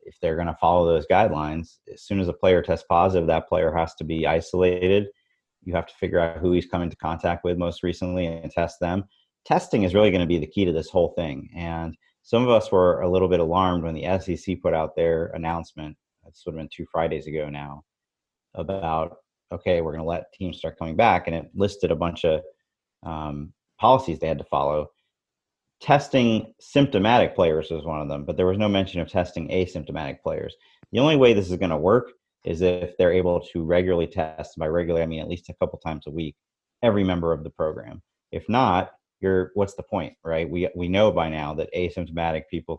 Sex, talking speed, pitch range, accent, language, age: male, 215 wpm, 80-95 Hz, American, English, 30-49